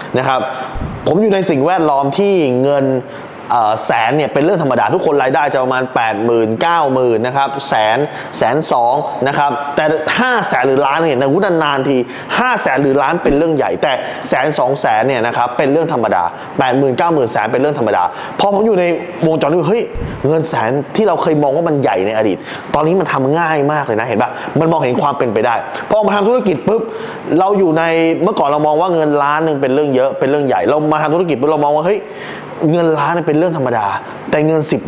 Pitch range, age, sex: 135-170 Hz, 20-39, male